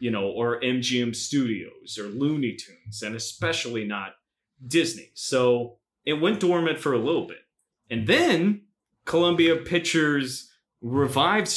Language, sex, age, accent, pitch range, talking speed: English, male, 30-49, American, 115-165 Hz, 130 wpm